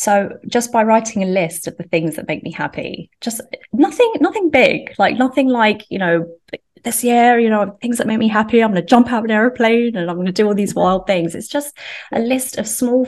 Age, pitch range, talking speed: 20-39, 165-215 Hz, 250 wpm